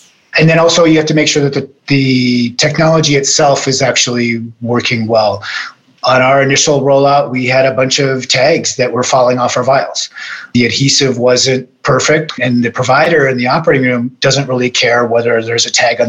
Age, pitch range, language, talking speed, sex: 30-49, 120-135 Hz, English, 195 wpm, male